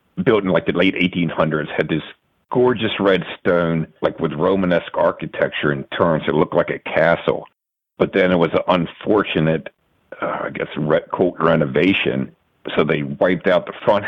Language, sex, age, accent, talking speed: English, male, 50-69, American, 175 wpm